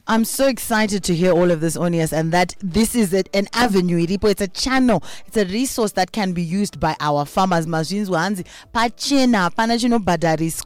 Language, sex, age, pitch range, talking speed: English, female, 30-49, 170-225 Hz, 160 wpm